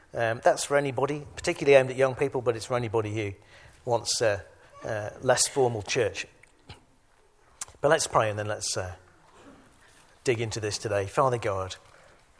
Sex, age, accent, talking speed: male, 50-69, British, 160 wpm